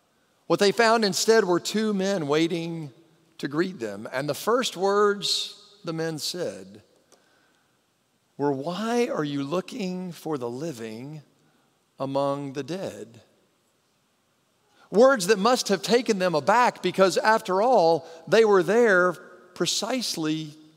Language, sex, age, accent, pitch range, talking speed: English, male, 50-69, American, 130-185 Hz, 125 wpm